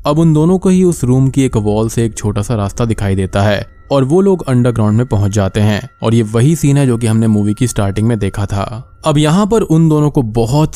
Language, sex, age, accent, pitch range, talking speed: Hindi, male, 20-39, native, 105-135 Hz, 260 wpm